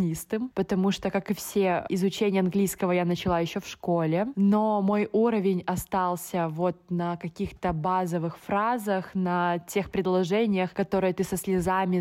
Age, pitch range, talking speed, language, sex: 20-39, 175-200 Hz, 140 wpm, Russian, female